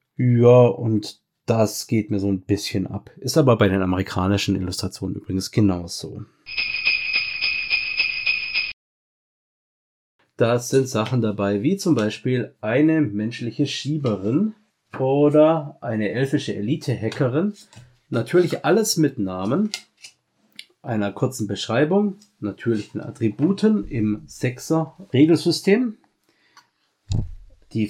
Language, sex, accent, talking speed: German, male, German, 95 wpm